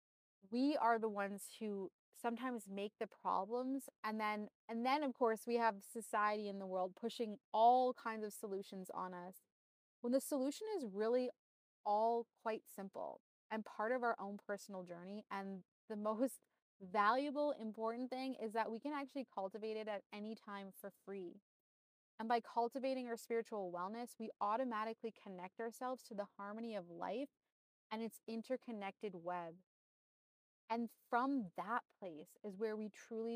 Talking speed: 160 wpm